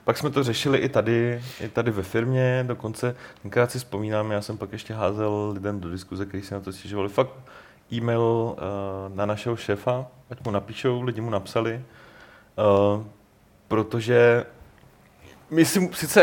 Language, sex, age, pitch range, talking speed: Czech, male, 30-49, 105-125 Hz, 165 wpm